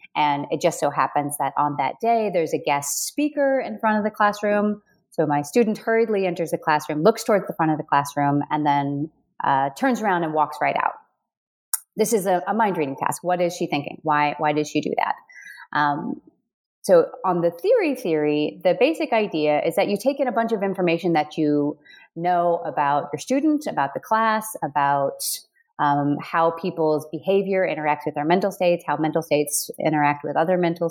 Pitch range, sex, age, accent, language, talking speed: 150-210 Hz, female, 30-49, American, English, 200 wpm